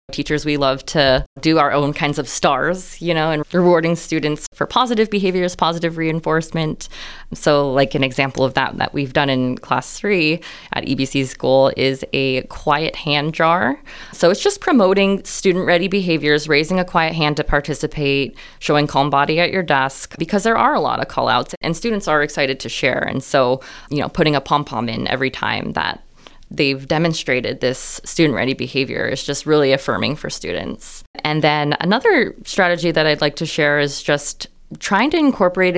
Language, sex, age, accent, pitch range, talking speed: English, female, 20-39, American, 140-170 Hz, 185 wpm